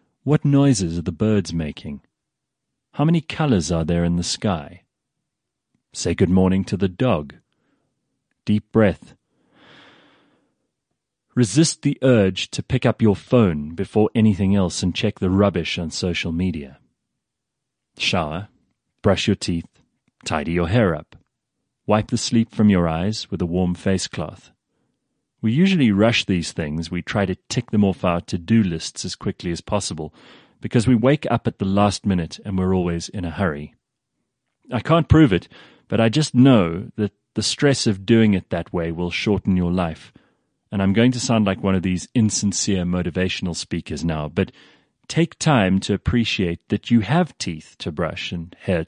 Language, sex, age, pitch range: English, male, 30-49, 90-115 Hz